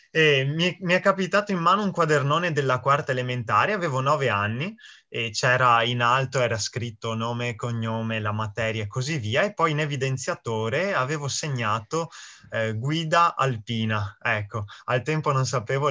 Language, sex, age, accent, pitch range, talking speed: Italian, male, 20-39, native, 115-150 Hz, 160 wpm